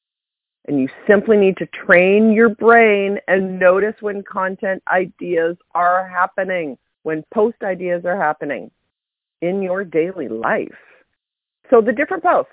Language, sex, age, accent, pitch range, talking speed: English, female, 40-59, American, 165-225 Hz, 135 wpm